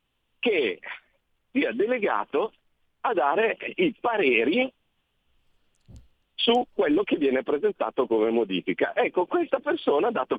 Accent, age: native, 50-69